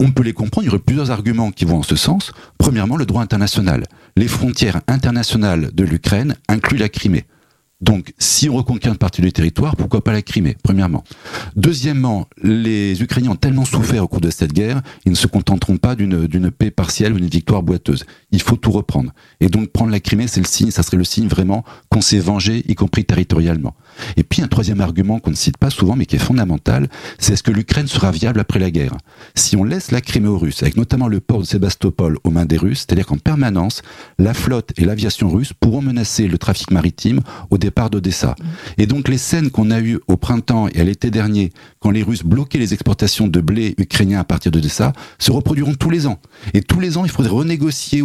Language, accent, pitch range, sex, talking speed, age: French, French, 95-120 Hz, male, 225 wpm, 40-59